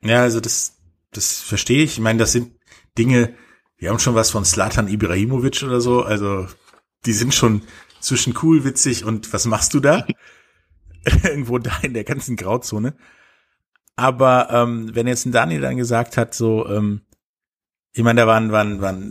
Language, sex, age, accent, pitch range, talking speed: German, male, 50-69, German, 95-120 Hz, 175 wpm